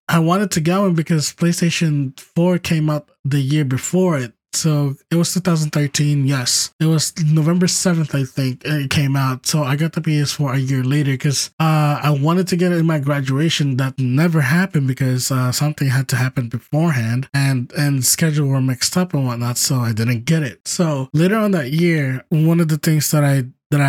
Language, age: English, 20-39